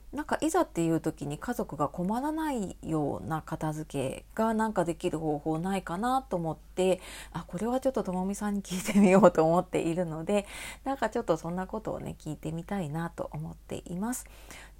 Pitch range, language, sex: 165-245 Hz, Japanese, female